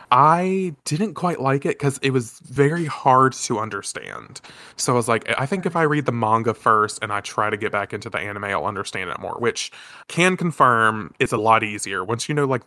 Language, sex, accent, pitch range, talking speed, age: English, male, American, 110-150 Hz, 225 wpm, 20-39